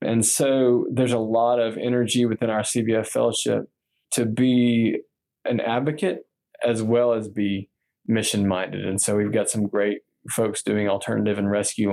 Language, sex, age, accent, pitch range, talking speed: English, male, 20-39, American, 105-120 Hz, 155 wpm